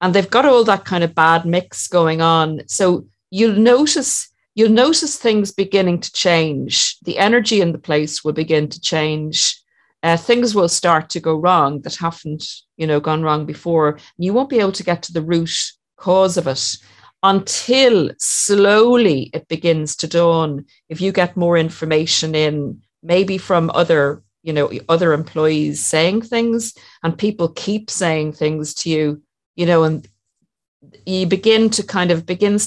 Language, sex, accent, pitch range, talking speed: English, female, Irish, 155-190 Hz, 170 wpm